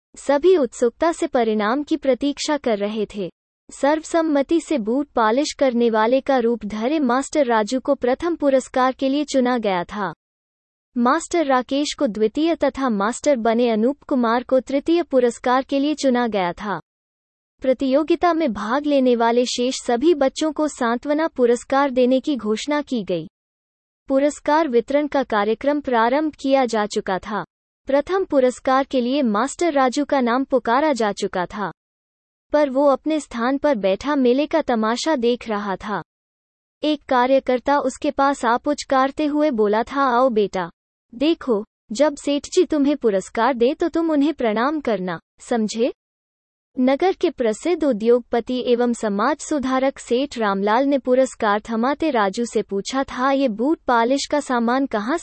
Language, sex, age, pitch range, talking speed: Hindi, female, 20-39, 230-290 Hz, 150 wpm